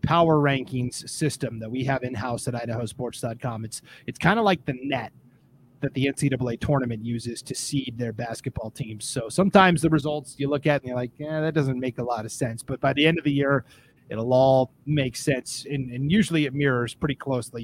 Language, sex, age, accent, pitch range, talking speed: English, male, 30-49, American, 125-150 Hz, 210 wpm